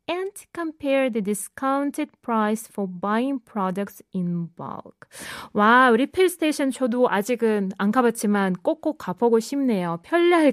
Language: Korean